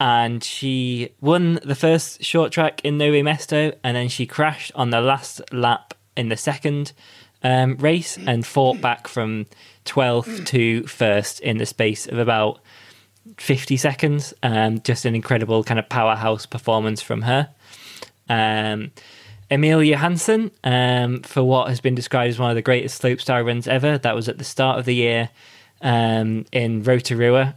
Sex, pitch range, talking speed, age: male, 115-135 Hz, 165 wpm, 20-39